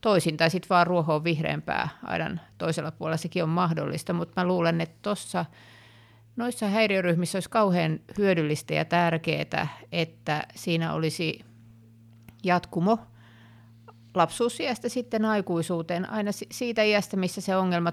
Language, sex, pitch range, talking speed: Finnish, female, 140-185 Hz, 125 wpm